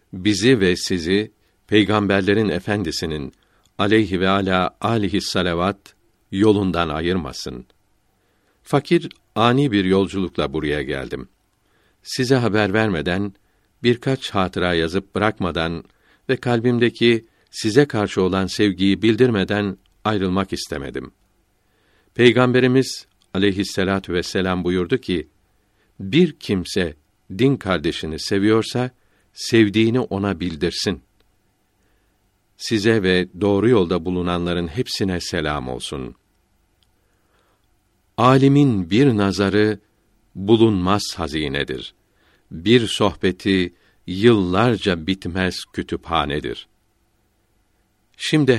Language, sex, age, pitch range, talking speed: Turkish, male, 50-69, 95-110 Hz, 80 wpm